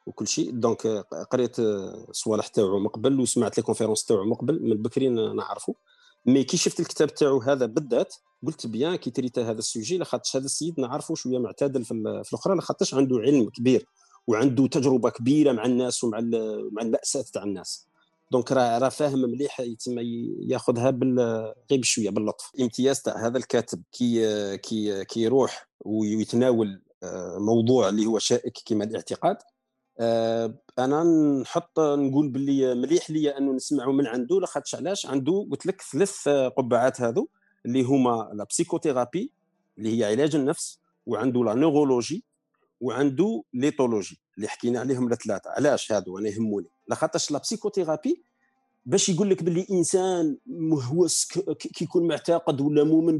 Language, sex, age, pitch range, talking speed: Arabic, male, 40-59, 120-160 Hz, 140 wpm